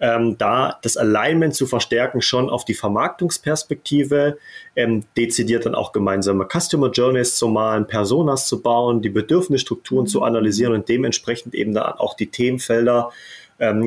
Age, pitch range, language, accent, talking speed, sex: 30-49, 110-135 Hz, German, German, 145 wpm, male